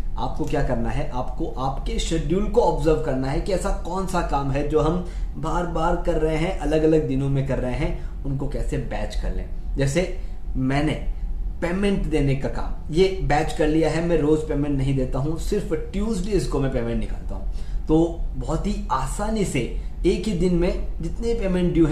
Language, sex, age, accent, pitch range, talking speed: Hindi, male, 20-39, native, 125-165 Hz, 195 wpm